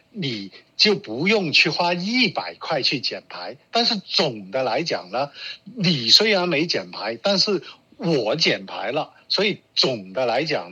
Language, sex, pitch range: Chinese, male, 155-205 Hz